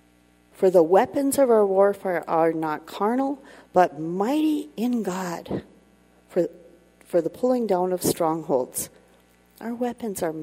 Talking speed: 130 wpm